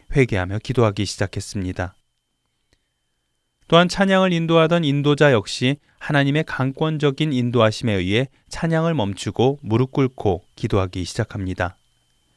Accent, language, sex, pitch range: native, Korean, male, 110-155 Hz